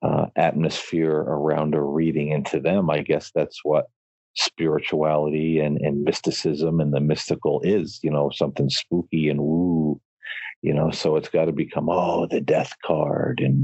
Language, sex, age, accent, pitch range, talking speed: English, male, 40-59, American, 75-80 Hz, 165 wpm